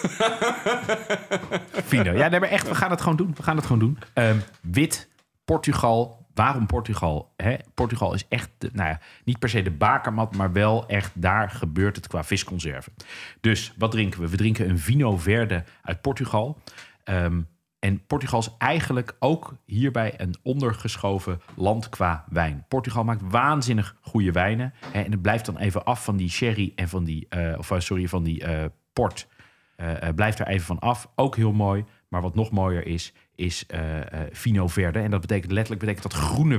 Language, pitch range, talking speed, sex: Dutch, 95-120 Hz, 185 wpm, male